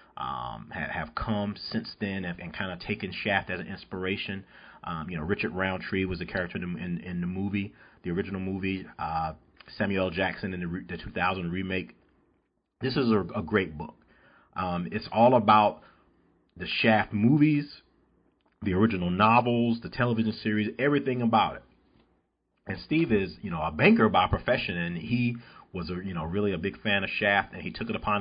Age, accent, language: 40-59, American, English